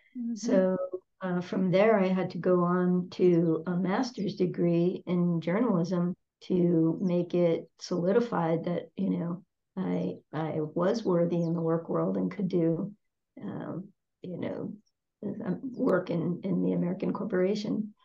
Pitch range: 175-205 Hz